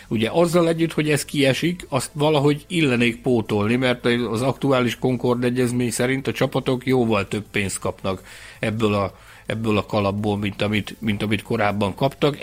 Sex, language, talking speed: male, Hungarian, 160 wpm